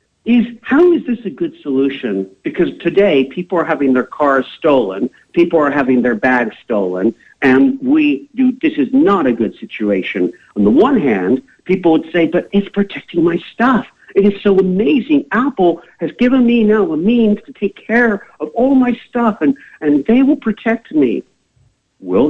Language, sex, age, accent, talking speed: English, male, 50-69, American, 180 wpm